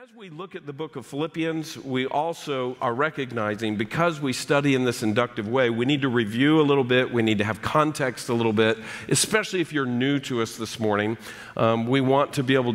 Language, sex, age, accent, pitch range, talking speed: English, male, 50-69, American, 125-185 Hz, 225 wpm